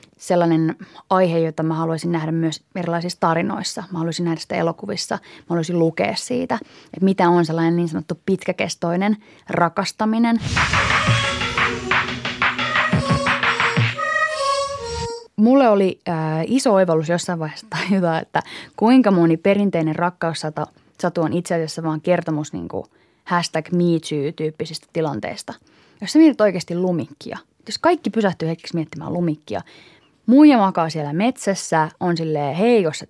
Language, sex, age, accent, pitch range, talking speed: Finnish, female, 20-39, native, 160-210 Hz, 120 wpm